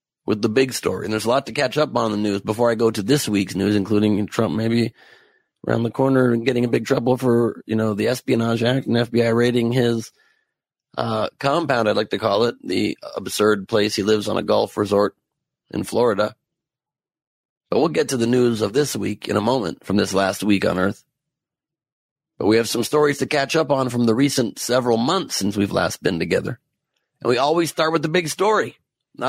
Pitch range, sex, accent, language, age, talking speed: 115-150 Hz, male, American, English, 30-49, 215 wpm